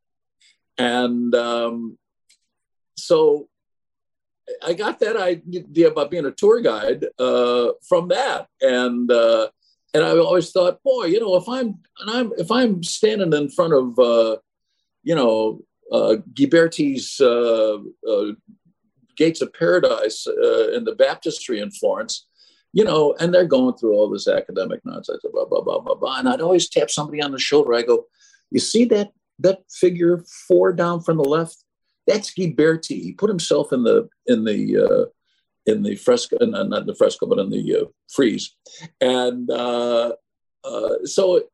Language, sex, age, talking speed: English, male, 50-69, 160 wpm